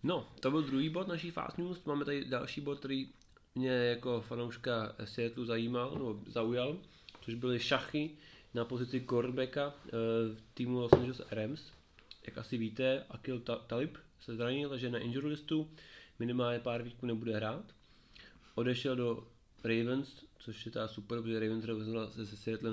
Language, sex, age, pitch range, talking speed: Czech, male, 20-39, 115-135 Hz, 160 wpm